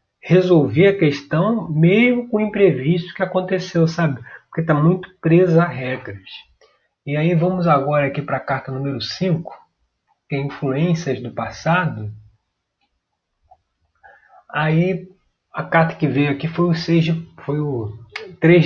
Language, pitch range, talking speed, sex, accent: Portuguese, 125-175 Hz, 140 wpm, male, Brazilian